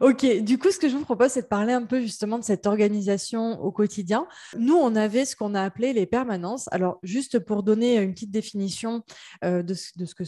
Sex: female